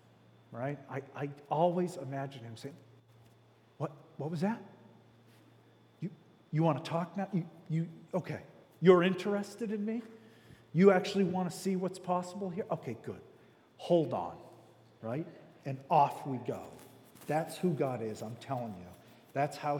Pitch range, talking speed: 115-170 Hz, 150 wpm